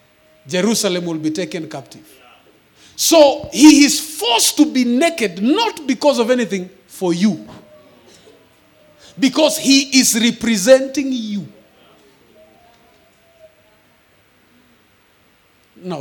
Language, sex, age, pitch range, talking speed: English, male, 40-59, 140-215 Hz, 90 wpm